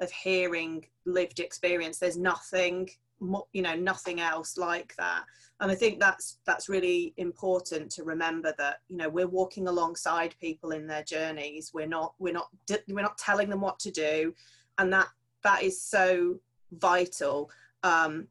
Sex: female